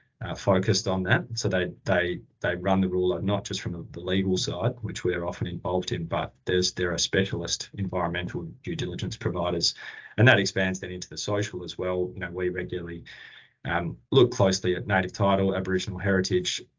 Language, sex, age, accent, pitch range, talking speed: English, male, 20-39, Australian, 90-100 Hz, 190 wpm